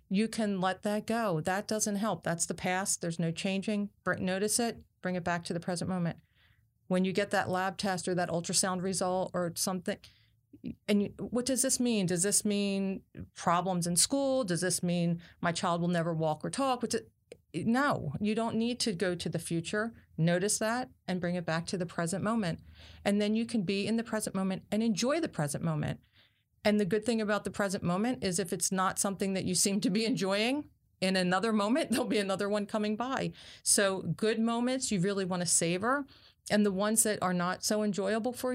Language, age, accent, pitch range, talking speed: English, 40-59, American, 180-220 Hz, 210 wpm